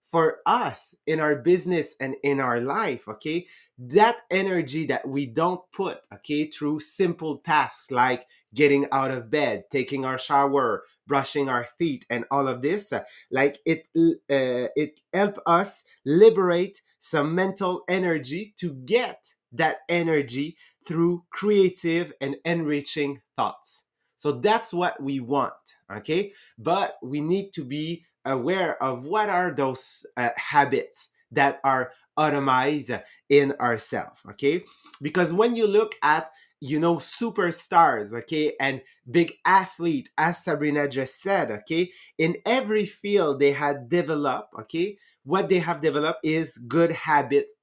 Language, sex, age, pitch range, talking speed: English, male, 30-49, 140-180 Hz, 135 wpm